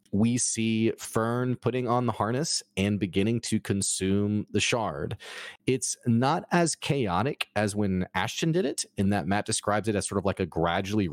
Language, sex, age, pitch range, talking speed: English, male, 30-49, 95-120 Hz, 180 wpm